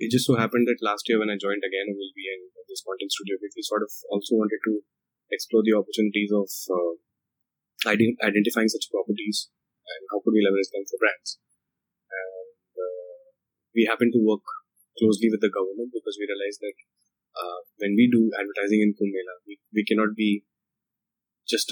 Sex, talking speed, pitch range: male, 175 wpm, 100-115 Hz